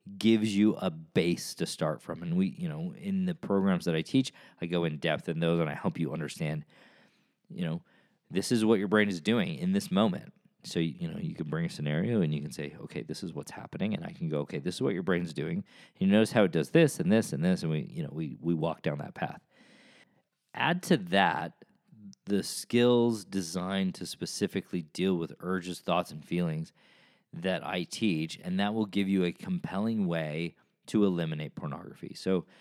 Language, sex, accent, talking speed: English, male, American, 215 wpm